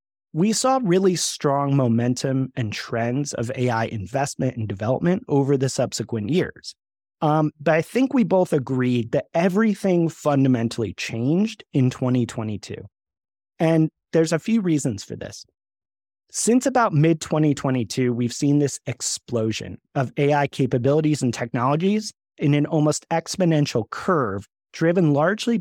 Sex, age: male, 30-49